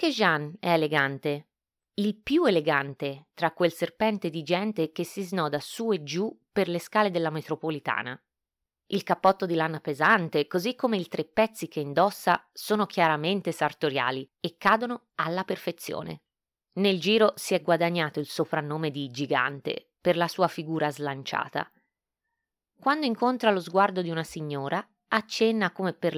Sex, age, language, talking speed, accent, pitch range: female, 20-39, Italian, 150 wpm, native, 150-195 Hz